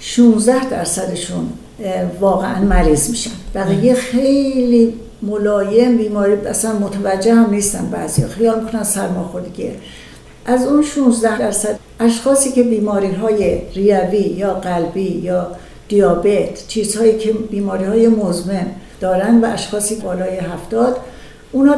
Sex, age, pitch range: female, 60-79, 200-235 Hz